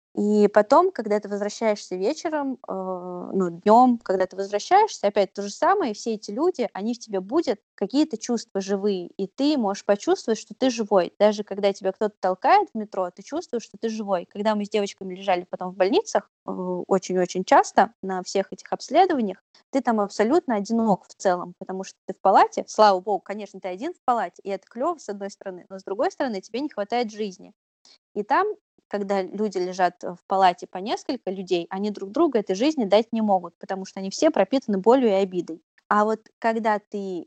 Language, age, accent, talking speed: Russian, 20-39, native, 200 wpm